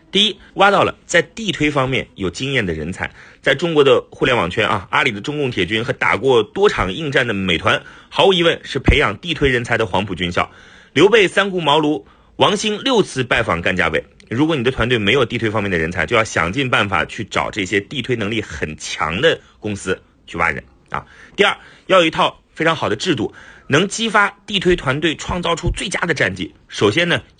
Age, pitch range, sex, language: 30-49, 100-170 Hz, male, Chinese